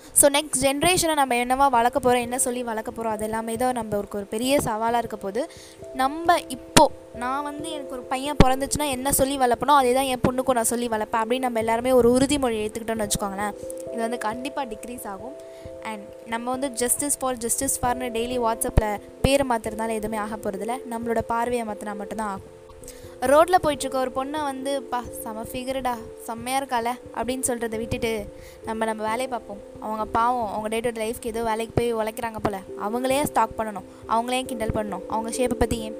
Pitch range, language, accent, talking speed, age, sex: 220-265 Hz, Tamil, native, 175 wpm, 20-39, female